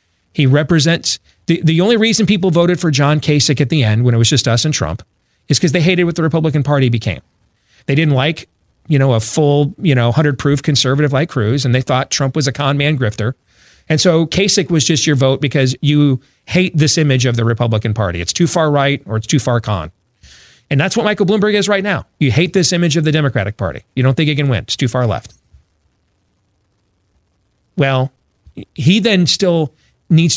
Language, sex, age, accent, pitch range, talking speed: English, male, 40-59, American, 110-165 Hz, 215 wpm